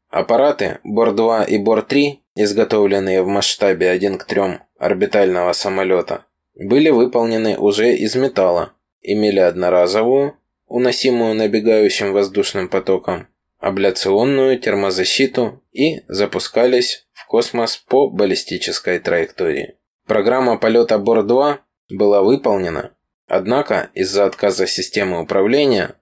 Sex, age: male, 20-39